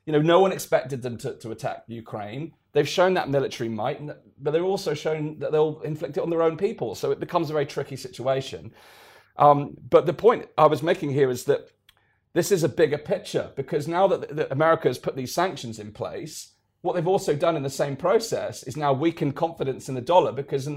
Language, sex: English, male